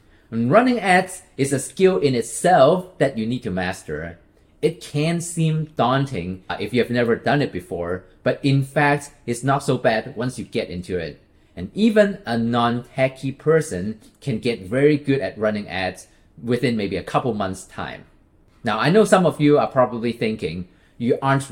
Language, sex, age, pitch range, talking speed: English, male, 30-49, 120-160 Hz, 180 wpm